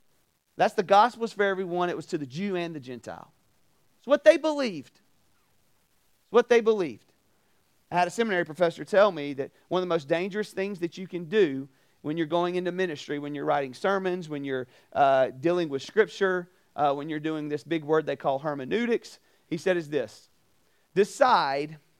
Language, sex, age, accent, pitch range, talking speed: English, male, 40-59, American, 145-210 Hz, 190 wpm